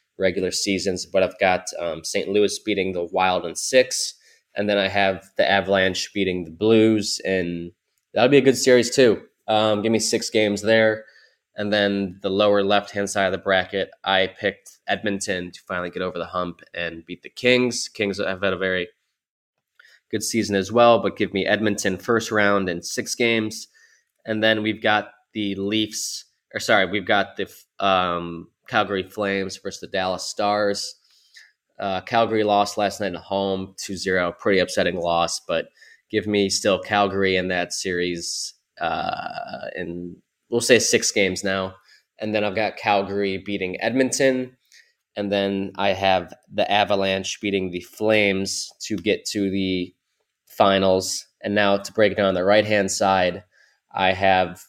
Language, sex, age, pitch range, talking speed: English, male, 20-39, 95-110 Hz, 170 wpm